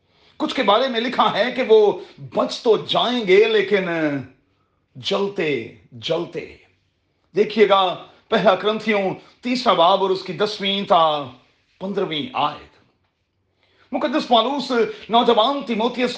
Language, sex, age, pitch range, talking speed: Urdu, male, 40-59, 175-240 Hz, 80 wpm